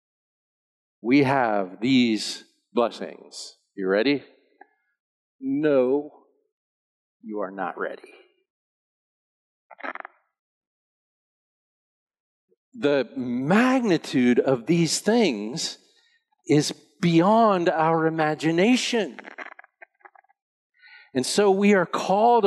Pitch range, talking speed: 150-230 Hz, 65 wpm